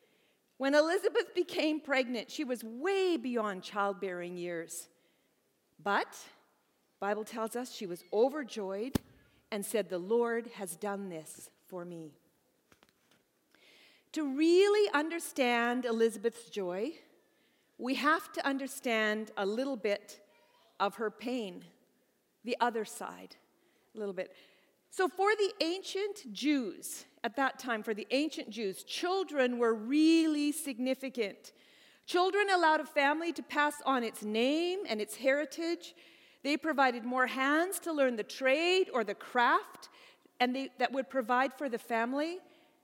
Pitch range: 220-310 Hz